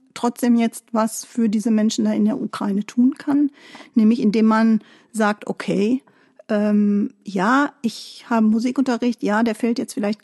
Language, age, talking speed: German, 50-69, 160 wpm